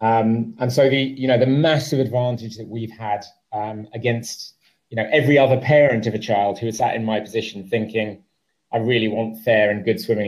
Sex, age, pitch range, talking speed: male, 30-49, 110-140 Hz, 210 wpm